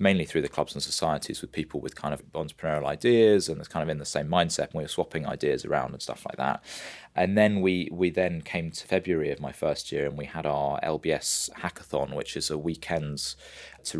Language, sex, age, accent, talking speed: English, male, 20-39, British, 230 wpm